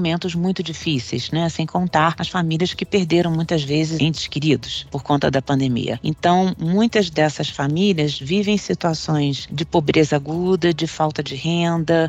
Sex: female